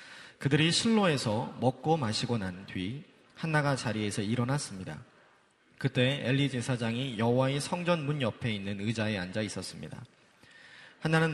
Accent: native